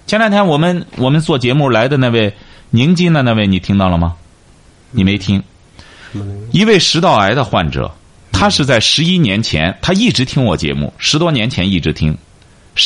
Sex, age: male, 30-49